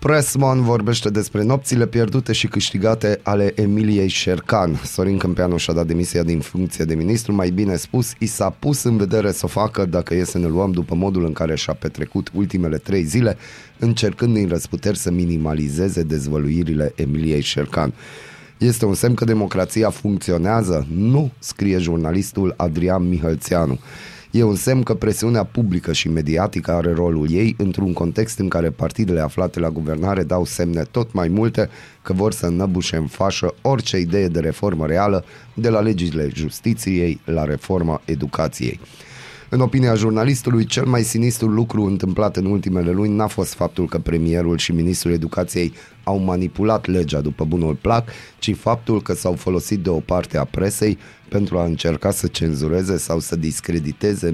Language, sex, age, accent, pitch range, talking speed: Romanian, male, 20-39, native, 85-110 Hz, 165 wpm